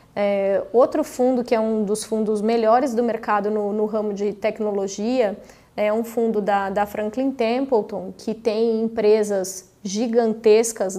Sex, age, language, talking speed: female, 20-39, Portuguese, 140 wpm